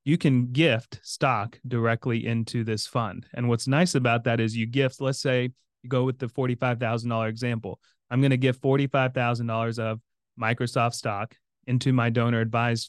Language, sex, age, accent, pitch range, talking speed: English, male, 30-49, American, 115-130 Hz, 170 wpm